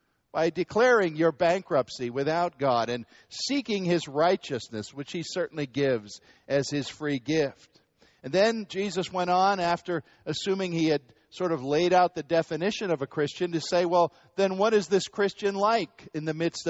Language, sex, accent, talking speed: English, male, American, 175 wpm